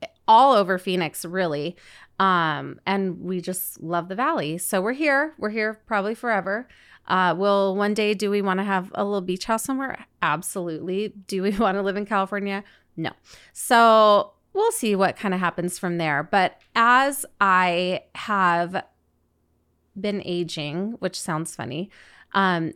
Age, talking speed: 30-49, 160 wpm